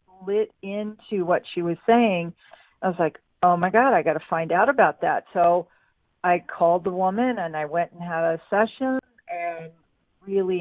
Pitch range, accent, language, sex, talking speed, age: 170-215 Hz, American, English, female, 185 wpm, 40-59